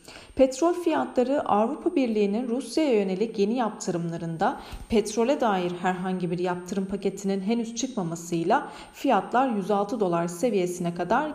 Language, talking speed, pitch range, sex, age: Turkish, 110 wpm, 180-245 Hz, female, 40-59